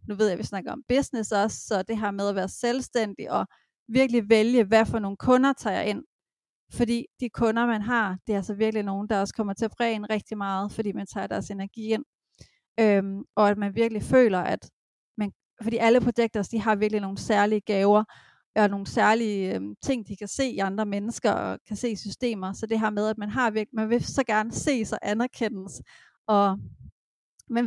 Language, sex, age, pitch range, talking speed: Danish, female, 30-49, 205-235 Hz, 215 wpm